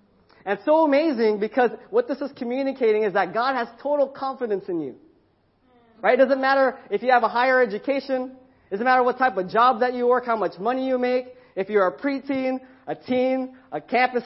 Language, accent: English, American